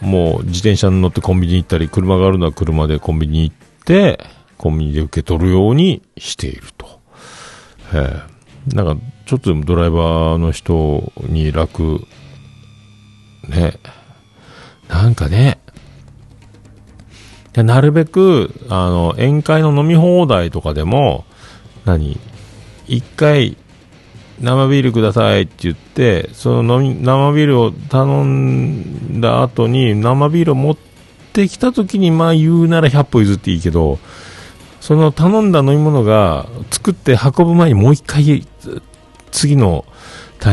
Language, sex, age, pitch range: Japanese, male, 50-69, 90-140 Hz